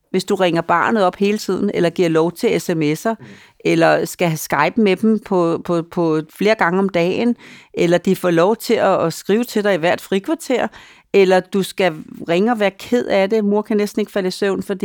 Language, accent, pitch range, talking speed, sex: Danish, native, 160-210 Hz, 215 wpm, female